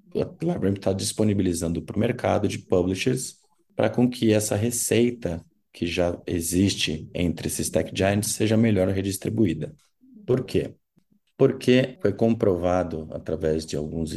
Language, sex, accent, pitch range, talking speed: Portuguese, male, Brazilian, 85-110 Hz, 135 wpm